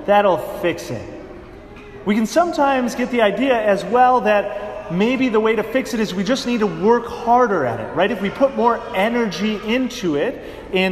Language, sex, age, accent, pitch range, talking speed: English, male, 30-49, American, 190-235 Hz, 200 wpm